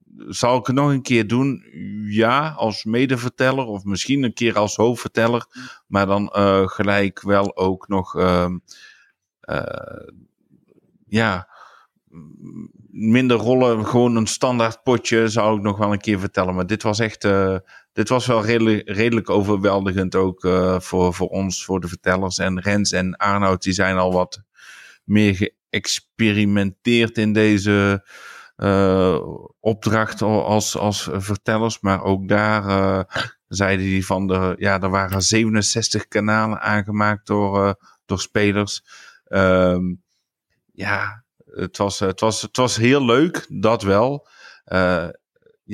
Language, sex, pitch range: Dutch, male, 95-110 Hz